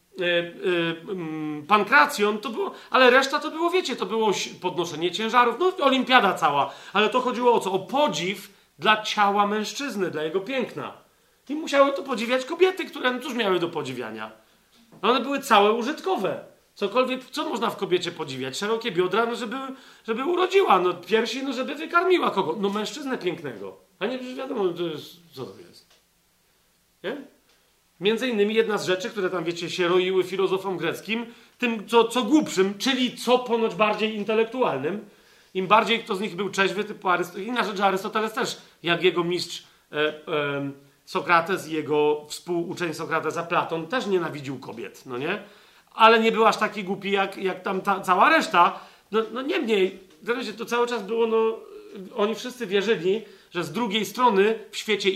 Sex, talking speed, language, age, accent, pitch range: male, 170 wpm, Polish, 40-59, native, 180-240 Hz